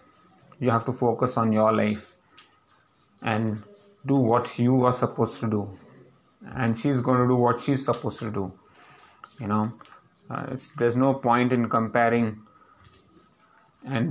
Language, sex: English, male